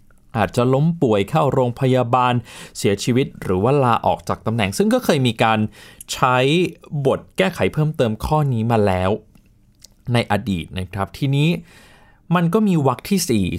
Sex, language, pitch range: male, Thai, 105-150 Hz